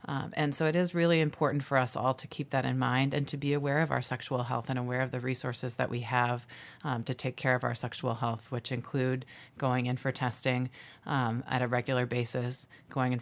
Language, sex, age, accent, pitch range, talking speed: English, female, 30-49, American, 125-145 Hz, 235 wpm